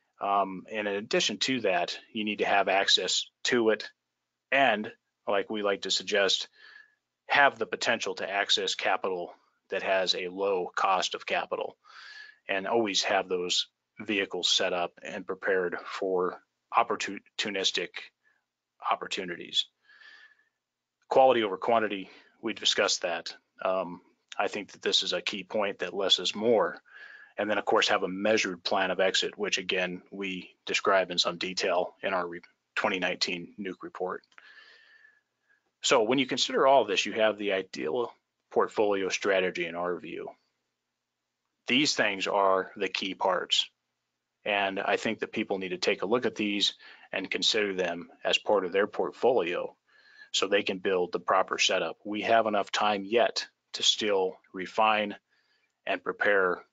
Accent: American